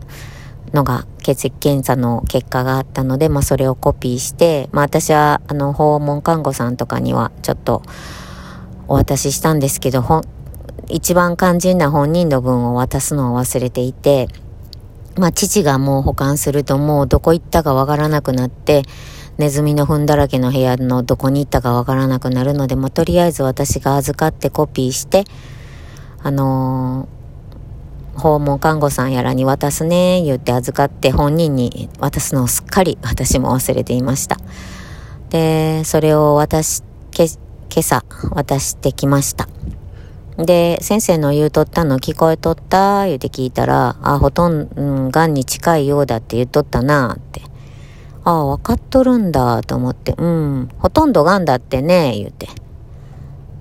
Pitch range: 130-155 Hz